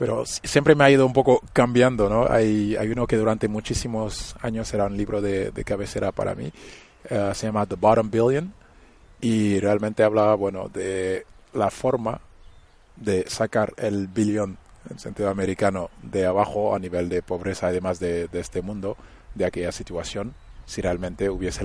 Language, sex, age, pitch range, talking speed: Spanish, male, 20-39, 95-110 Hz, 170 wpm